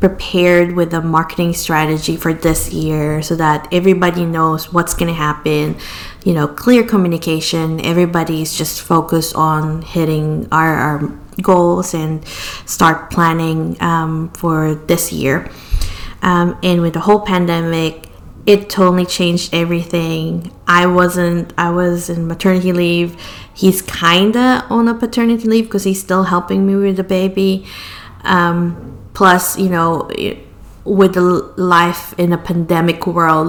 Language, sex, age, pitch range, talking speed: English, female, 20-39, 160-180 Hz, 140 wpm